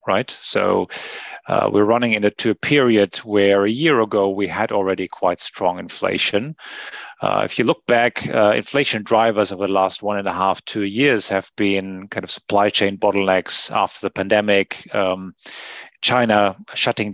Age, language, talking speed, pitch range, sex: 30-49, English, 170 wpm, 100-115 Hz, male